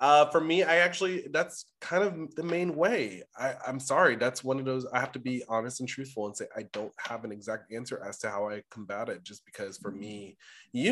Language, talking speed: English, 240 wpm